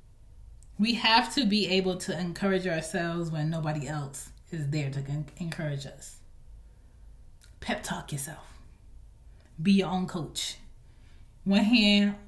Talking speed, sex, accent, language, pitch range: 120 wpm, female, American, English, 175-245 Hz